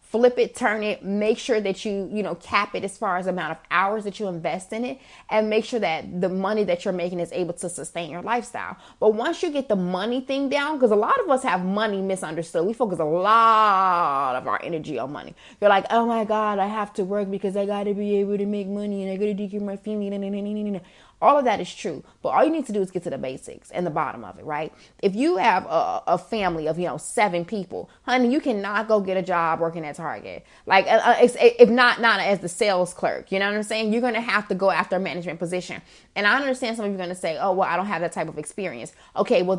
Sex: female